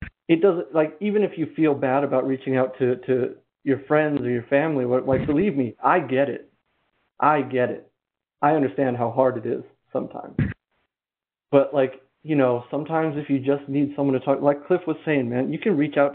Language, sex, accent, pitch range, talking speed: English, male, American, 125-145 Hz, 205 wpm